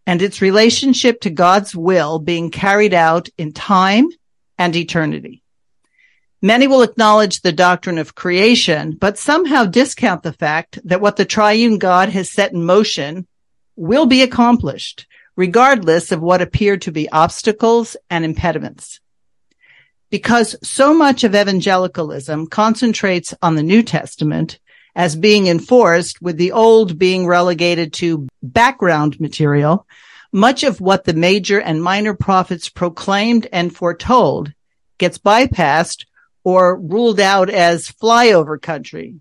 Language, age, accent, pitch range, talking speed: English, 50-69, American, 165-215 Hz, 130 wpm